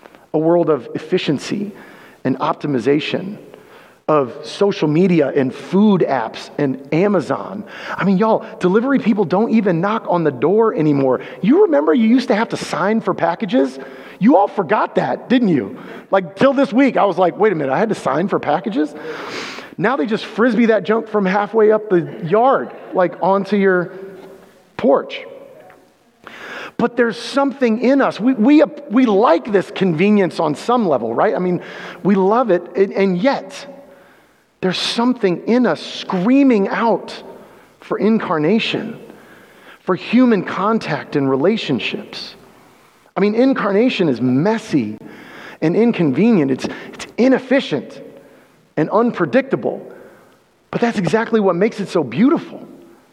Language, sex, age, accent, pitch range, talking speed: English, male, 40-59, American, 170-230 Hz, 145 wpm